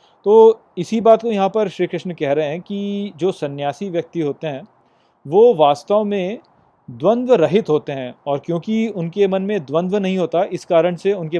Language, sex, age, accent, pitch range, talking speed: Hindi, male, 30-49, native, 150-195 Hz, 190 wpm